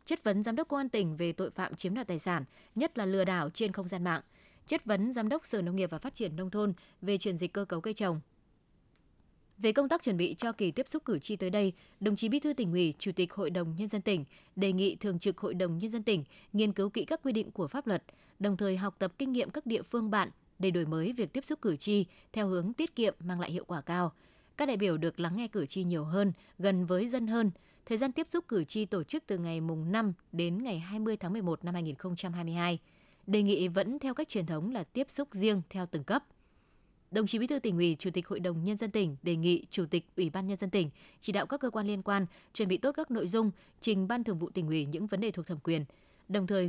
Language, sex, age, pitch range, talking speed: Vietnamese, female, 20-39, 175-220 Hz, 265 wpm